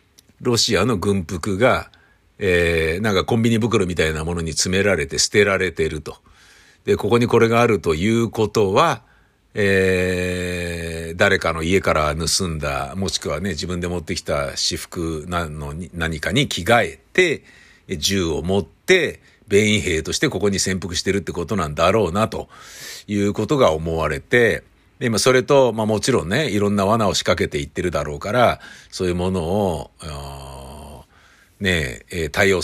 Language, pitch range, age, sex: Japanese, 85-110 Hz, 50-69, male